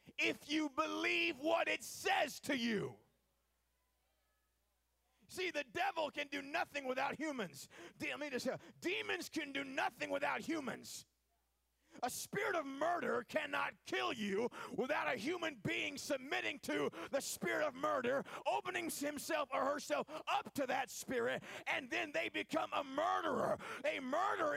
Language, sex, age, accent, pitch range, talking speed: English, male, 40-59, American, 290-360 Hz, 145 wpm